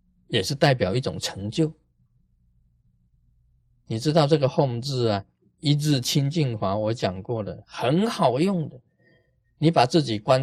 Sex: male